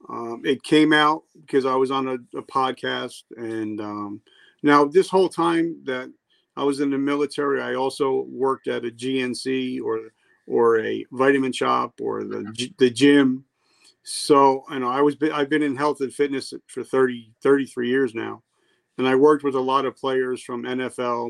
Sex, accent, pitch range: male, American, 125-145 Hz